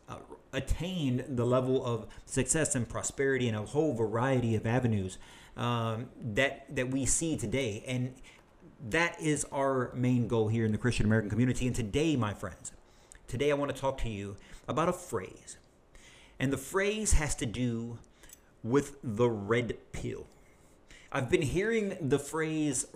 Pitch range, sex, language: 115-145 Hz, male, English